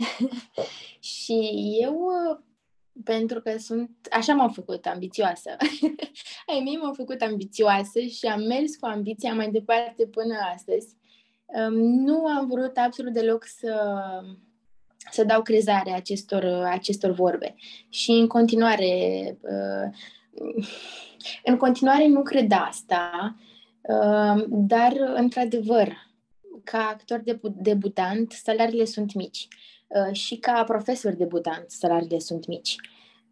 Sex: female